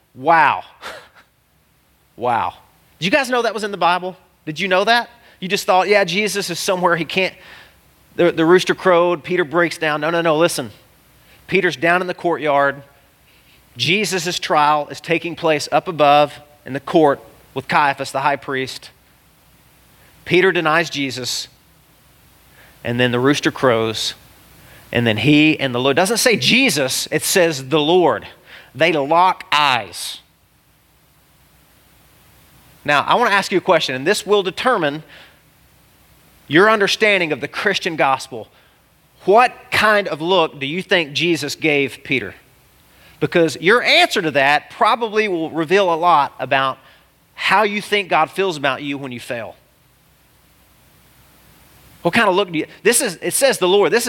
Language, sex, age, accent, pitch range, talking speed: English, male, 40-59, American, 145-185 Hz, 160 wpm